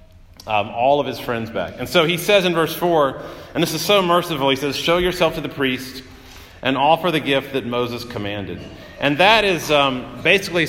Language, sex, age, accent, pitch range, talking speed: English, male, 40-59, American, 120-160 Hz, 210 wpm